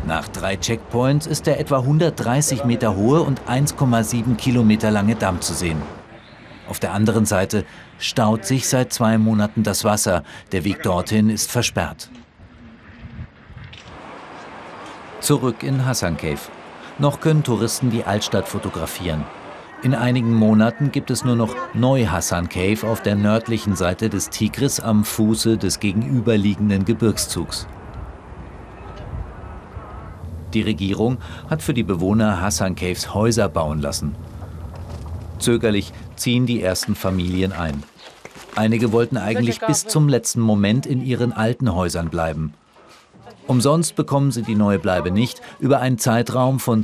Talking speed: 130 wpm